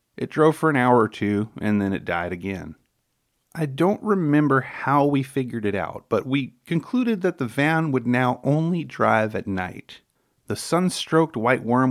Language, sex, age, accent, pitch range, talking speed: English, male, 30-49, American, 105-135 Hz, 180 wpm